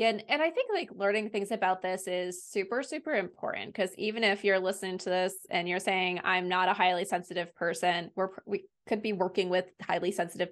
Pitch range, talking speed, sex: 185-225 Hz, 210 wpm, female